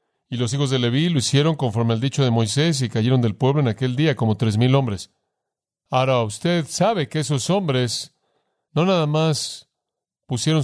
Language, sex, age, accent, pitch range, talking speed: Spanish, male, 40-59, Mexican, 115-145 Hz, 185 wpm